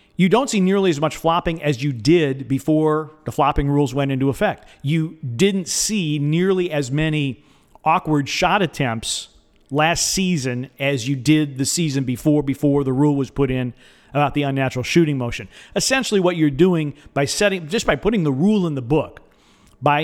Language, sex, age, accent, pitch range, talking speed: English, male, 40-59, American, 135-170 Hz, 180 wpm